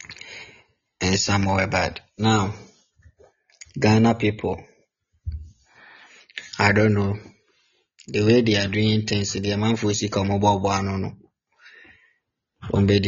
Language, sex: Japanese, male